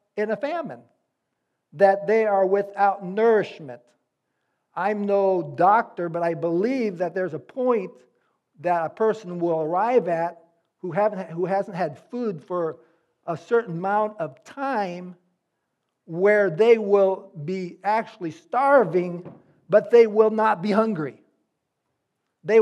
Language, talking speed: English, 130 wpm